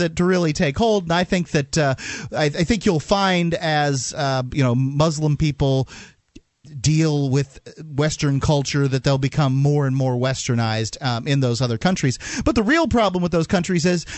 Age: 30-49